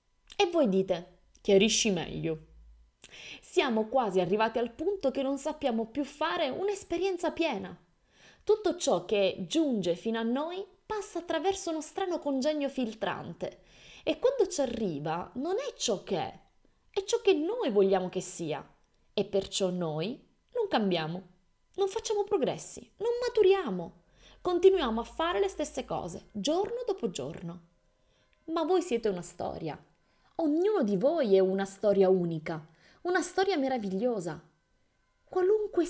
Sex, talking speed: female, 135 wpm